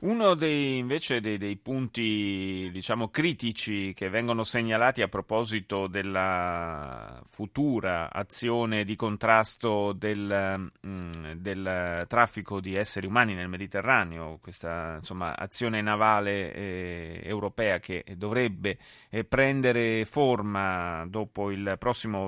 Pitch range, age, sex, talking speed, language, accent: 95-120 Hz, 30-49, male, 110 wpm, Italian, native